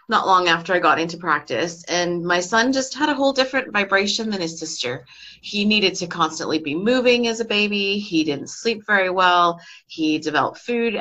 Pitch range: 155-195 Hz